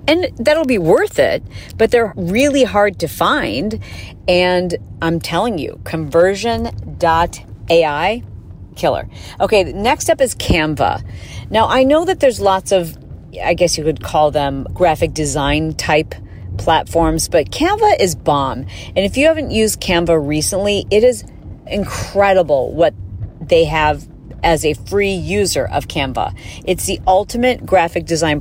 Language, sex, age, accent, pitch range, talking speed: English, female, 40-59, American, 145-200 Hz, 140 wpm